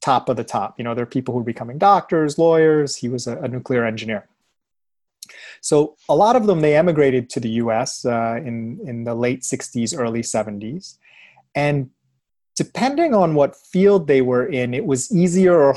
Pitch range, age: 125-155 Hz, 30-49